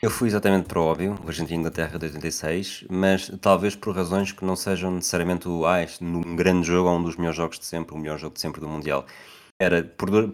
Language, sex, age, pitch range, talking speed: Portuguese, male, 20-39, 85-100 Hz, 250 wpm